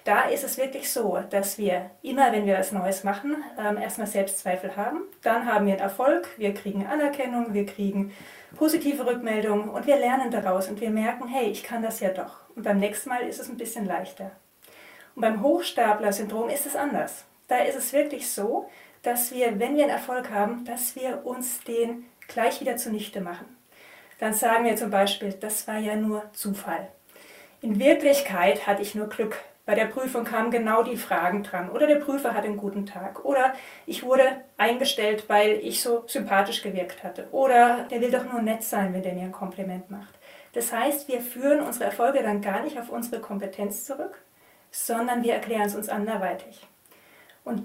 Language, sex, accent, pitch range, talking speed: German, female, German, 200-255 Hz, 190 wpm